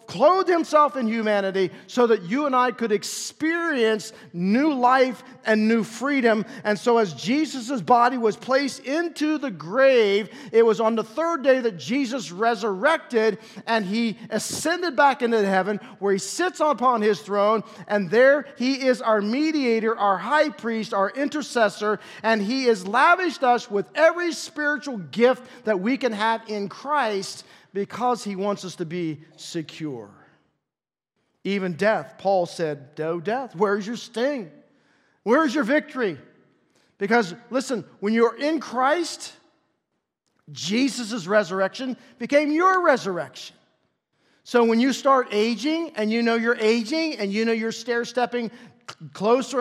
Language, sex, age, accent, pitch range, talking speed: English, male, 50-69, American, 205-265 Hz, 145 wpm